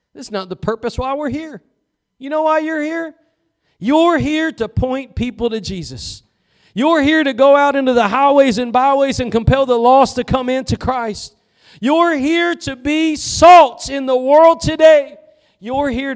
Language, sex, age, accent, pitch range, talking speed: English, male, 40-59, American, 180-265 Hz, 180 wpm